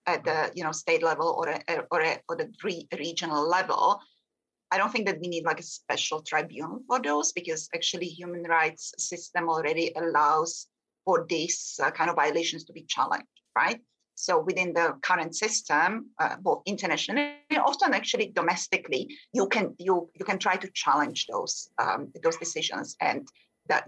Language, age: English, 30-49